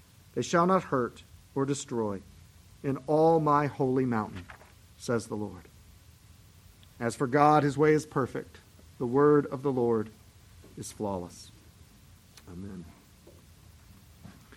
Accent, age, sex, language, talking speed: American, 40-59, male, English, 120 wpm